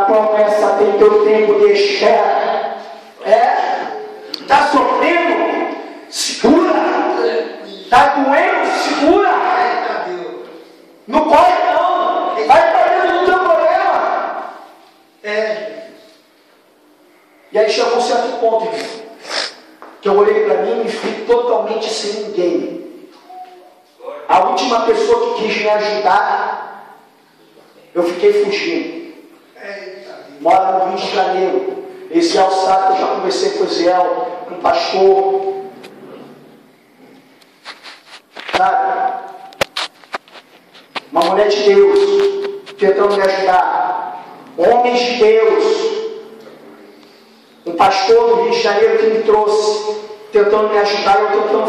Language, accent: Portuguese, Brazilian